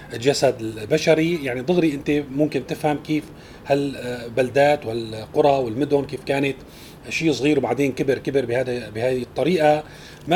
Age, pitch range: 30-49, 130-165 Hz